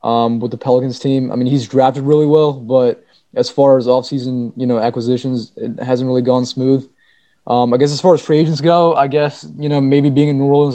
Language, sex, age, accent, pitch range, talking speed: English, male, 20-39, American, 130-155 Hz, 235 wpm